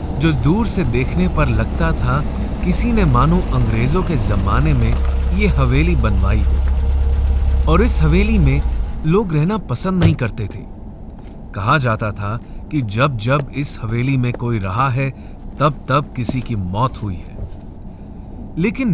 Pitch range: 100-155 Hz